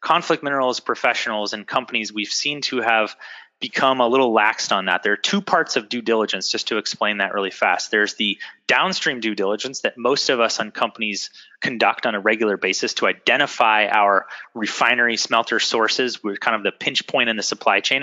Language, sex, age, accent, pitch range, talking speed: English, male, 30-49, American, 110-135 Hz, 200 wpm